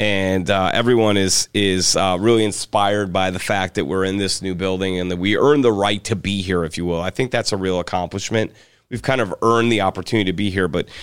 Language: English